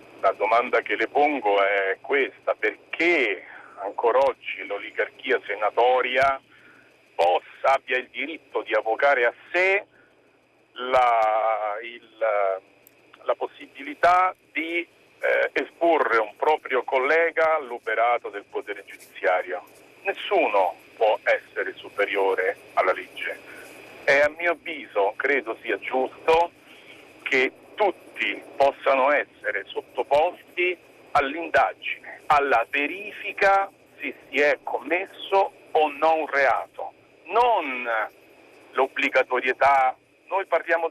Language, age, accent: Italian, 50-69, native